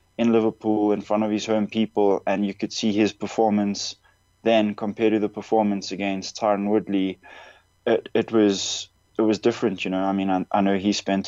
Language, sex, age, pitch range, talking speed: English, male, 20-39, 95-105 Hz, 195 wpm